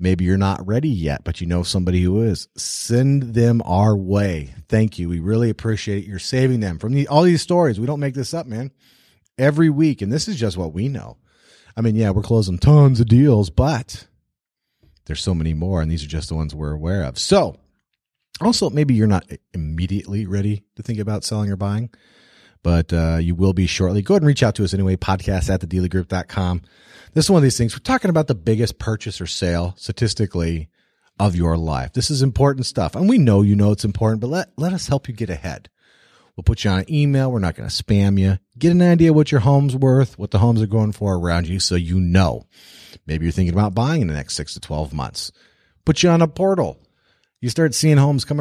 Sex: male